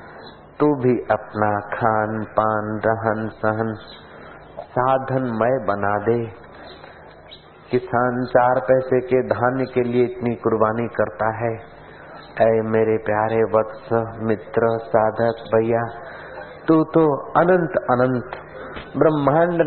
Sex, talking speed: male, 105 wpm